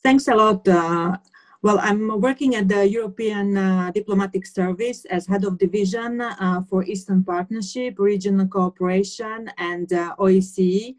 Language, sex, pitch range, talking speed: Finnish, female, 180-205 Hz, 140 wpm